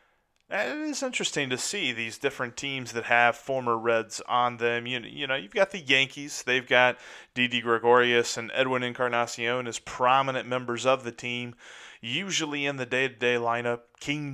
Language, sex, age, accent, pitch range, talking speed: English, male, 30-49, American, 115-135 Hz, 165 wpm